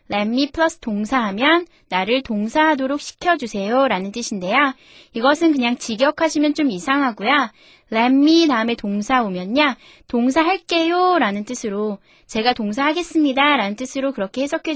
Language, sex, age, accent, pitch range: Korean, female, 20-39, native, 210-290 Hz